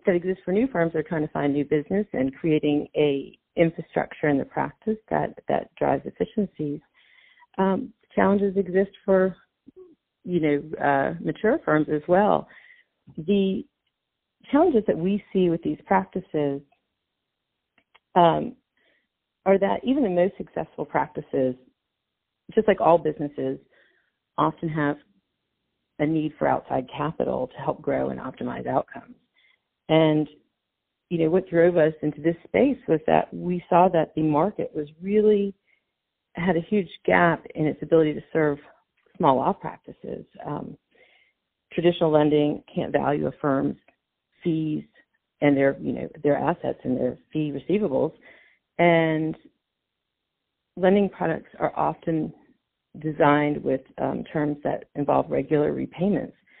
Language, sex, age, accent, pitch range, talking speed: English, female, 40-59, American, 150-195 Hz, 135 wpm